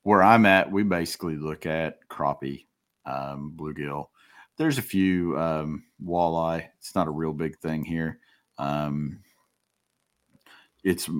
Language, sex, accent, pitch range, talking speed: English, male, American, 80-95 Hz, 130 wpm